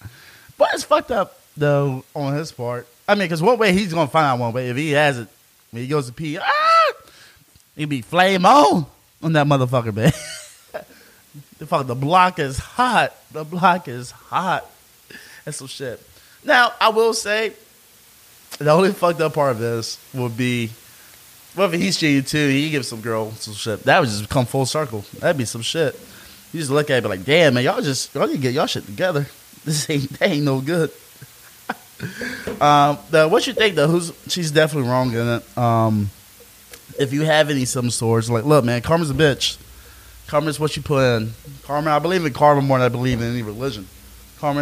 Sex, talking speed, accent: male, 200 wpm, American